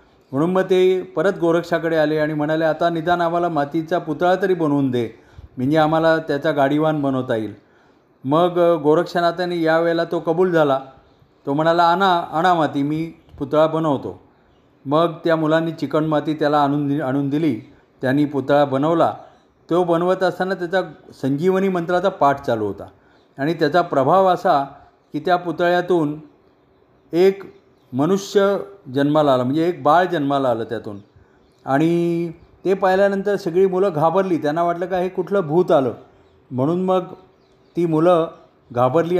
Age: 40-59